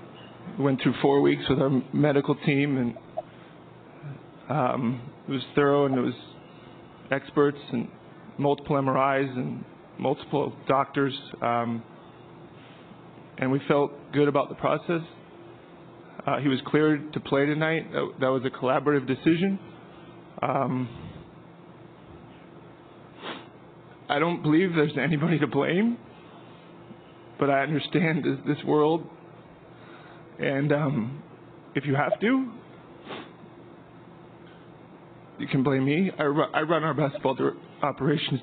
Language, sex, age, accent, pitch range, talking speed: English, male, 20-39, American, 140-165 Hz, 115 wpm